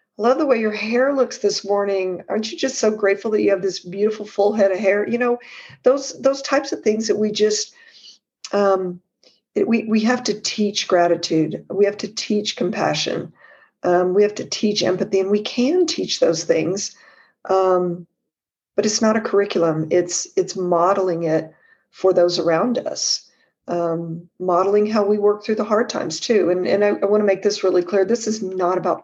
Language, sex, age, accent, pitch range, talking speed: English, female, 50-69, American, 180-215 Hz, 195 wpm